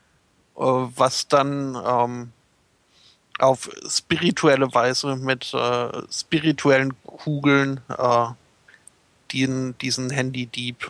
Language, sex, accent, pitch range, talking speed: German, male, German, 130-145 Hz, 85 wpm